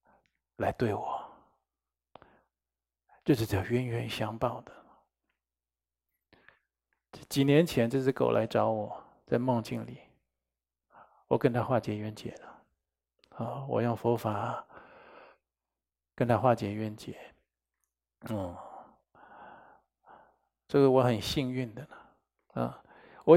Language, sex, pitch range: Chinese, male, 105-135 Hz